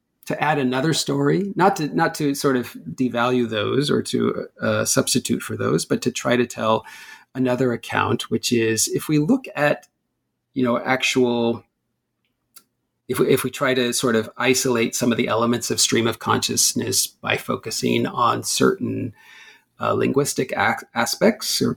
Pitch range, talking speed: 120-140 Hz, 165 wpm